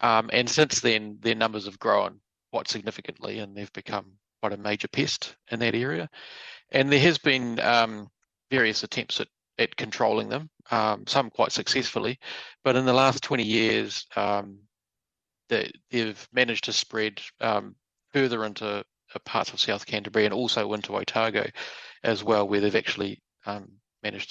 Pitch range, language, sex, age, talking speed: 105-125 Hz, English, male, 40-59, 165 wpm